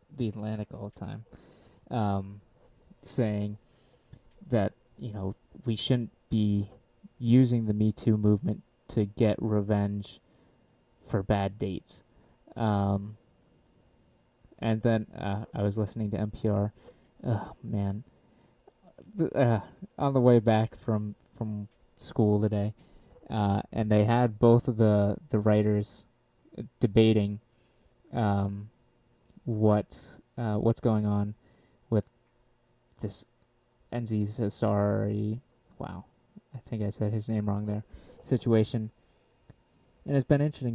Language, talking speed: English, 115 wpm